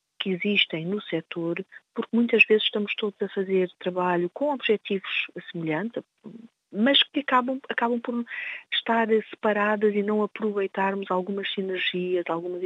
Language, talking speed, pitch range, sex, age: Portuguese, 135 wpm, 170-210 Hz, female, 40-59